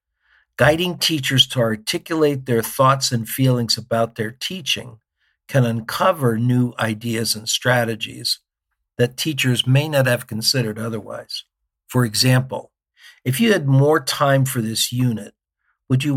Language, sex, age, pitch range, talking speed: English, male, 50-69, 110-130 Hz, 135 wpm